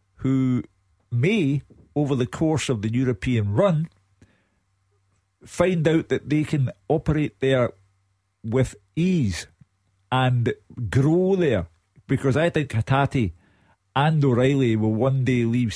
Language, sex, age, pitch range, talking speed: English, male, 50-69, 110-135 Hz, 120 wpm